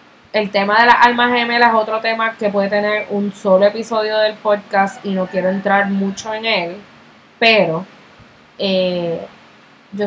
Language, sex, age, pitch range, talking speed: English, female, 20-39, 195-225 Hz, 160 wpm